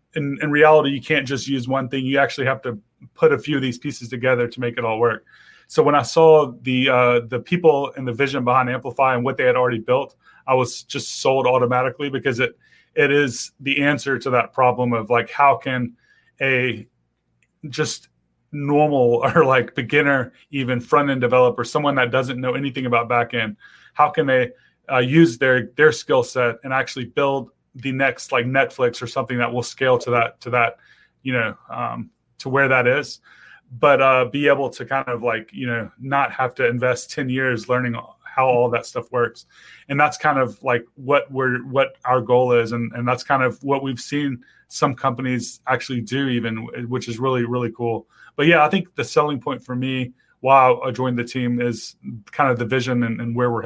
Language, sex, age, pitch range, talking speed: English, male, 30-49, 120-140 Hz, 205 wpm